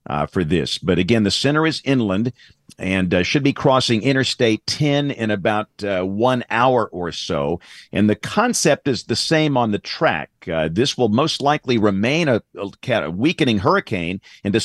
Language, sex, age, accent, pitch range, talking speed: English, male, 50-69, American, 100-135 Hz, 175 wpm